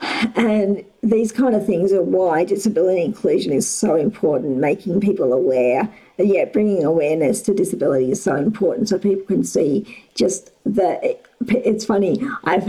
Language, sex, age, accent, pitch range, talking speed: English, female, 50-69, Australian, 190-245 Hz, 155 wpm